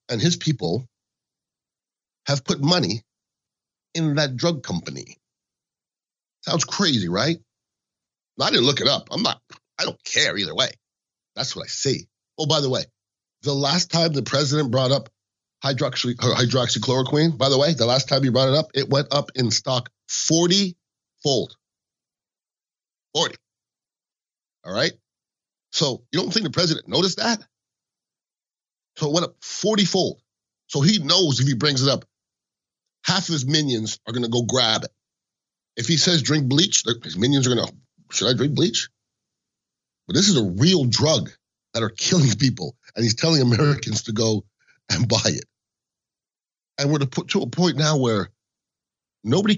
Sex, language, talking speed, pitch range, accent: male, English, 165 wpm, 120-170 Hz, American